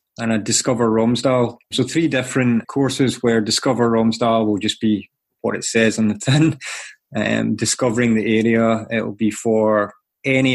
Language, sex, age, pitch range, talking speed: English, male, 20-39, 110-125 Hz, 165 wpm